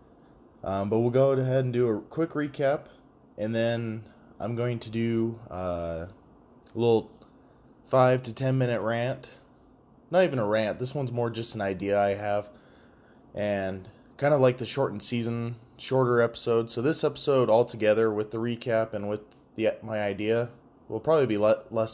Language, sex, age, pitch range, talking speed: English, male, 20-39, 105-125 Hz, 170 wpm